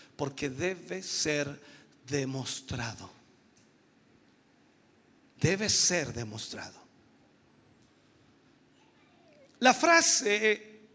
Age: 50-69